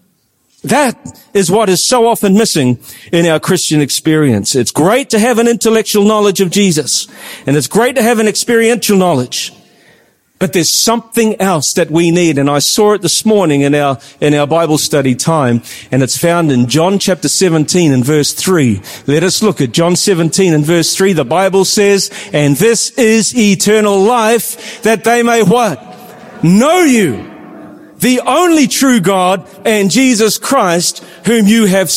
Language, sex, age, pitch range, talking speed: English, male, 40-59, 165-230 Hz, 170 wpm